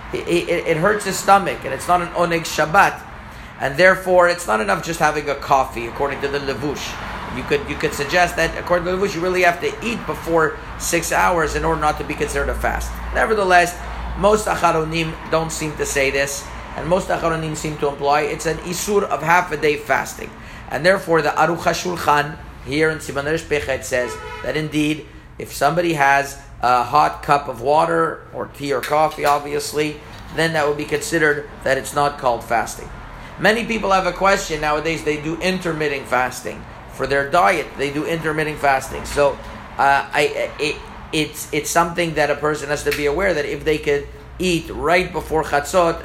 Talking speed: 195 wpm